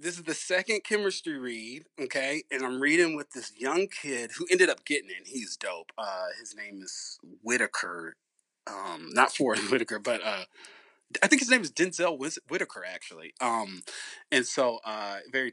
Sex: male